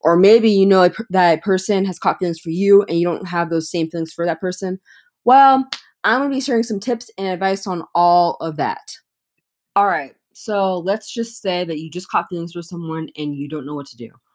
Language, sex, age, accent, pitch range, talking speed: English, female, 20-39, American, 155-185 Hz, 235 wpm